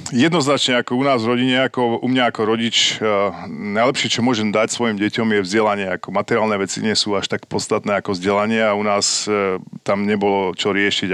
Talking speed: 200 wpm